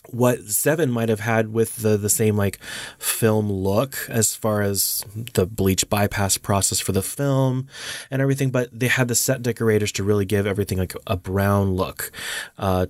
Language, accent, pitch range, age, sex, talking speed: English, American, 100-120 Hz, 20-39, male, 180 wpm